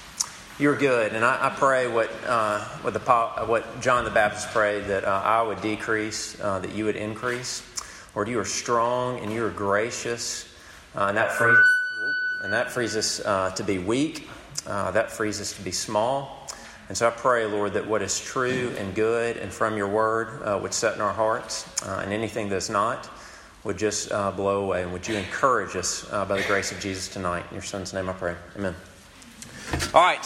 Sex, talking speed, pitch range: male, 205 wpm, 110-150 Hz